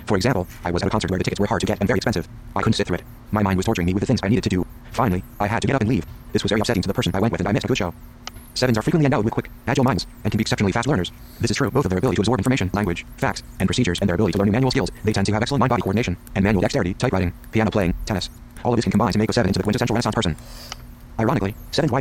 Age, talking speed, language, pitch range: 30-49, 340 wpm, English, 95-120 Hz